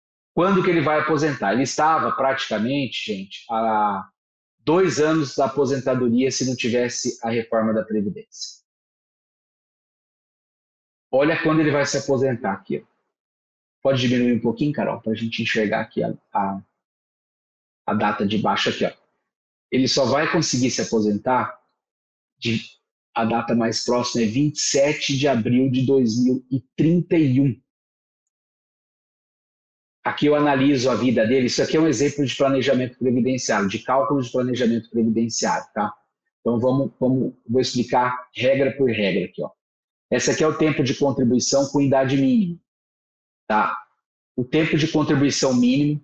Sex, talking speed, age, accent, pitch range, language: male, 140 wpm, 40-59, Brazilian, 115-145 Hz, Portuguese